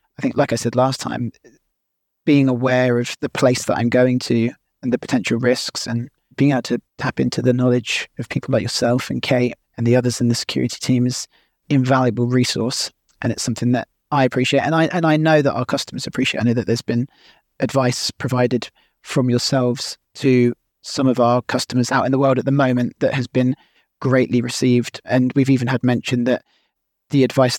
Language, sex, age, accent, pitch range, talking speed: English, male, 30-49, British, 125-140 Hz, 200 wpm